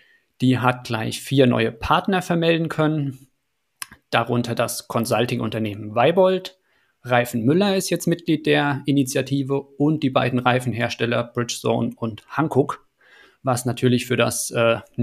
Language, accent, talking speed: German, German, 125 wpm